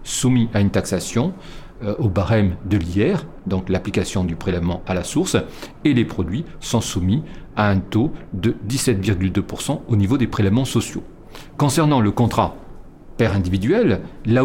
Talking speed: 155 wpm